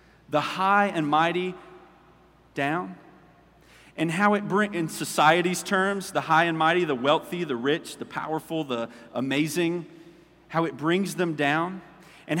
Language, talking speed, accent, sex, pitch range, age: English, 145 wpm, American, male, 155-205 Hz, 40-59